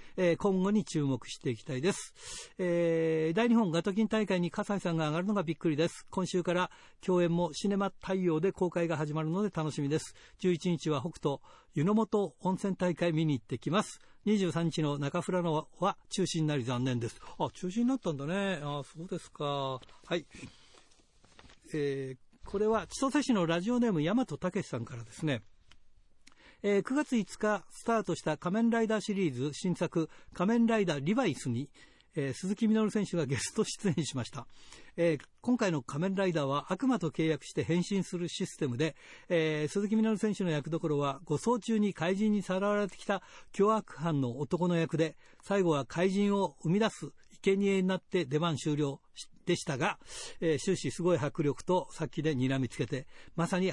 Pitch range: 150-200 Hz